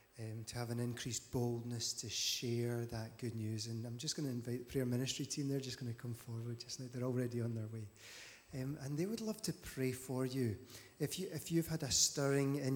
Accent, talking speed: British, 240 wpm